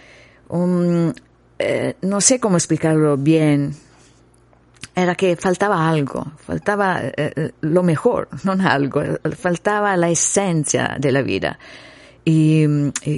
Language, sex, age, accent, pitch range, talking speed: Spanish, female, 50-69, Italian, 135-165 Hz, 115 wpm